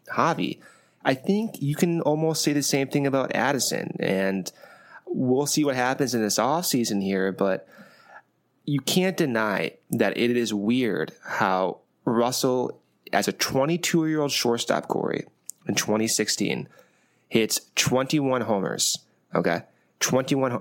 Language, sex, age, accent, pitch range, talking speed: English, male, 20-39, American, 105-145 Hz, 125 wpm